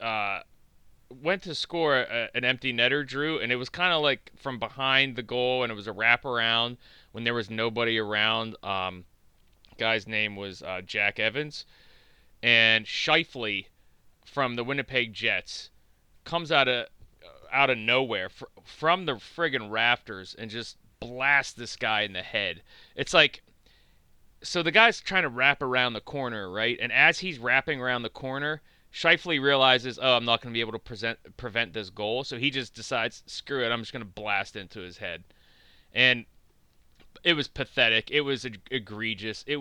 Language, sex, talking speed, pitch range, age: English, male, 175 wpm, 110-135 Hz, 30-49